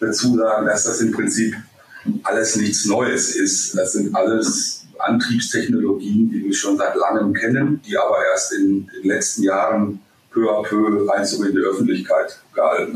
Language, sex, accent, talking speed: German, male, German, 160 wpm